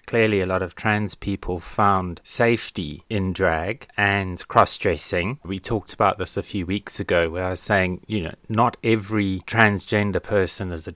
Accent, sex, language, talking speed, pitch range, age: British, male, English, 175 wpm, 95-115 Hz, 30-49